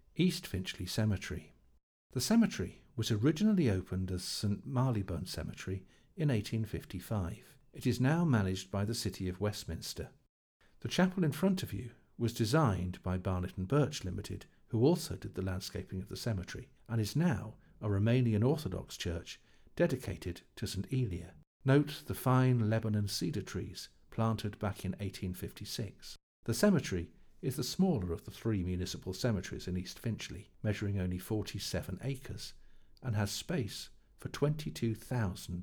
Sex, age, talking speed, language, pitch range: male, 50-69, 145 wpm, English, 95-130 Hz